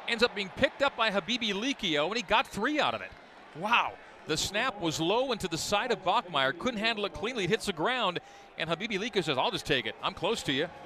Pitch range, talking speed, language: 150-215 Hz, 250 wpm, English